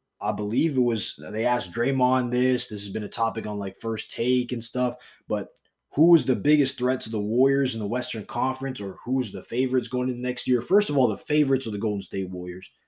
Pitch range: 110-140 Hz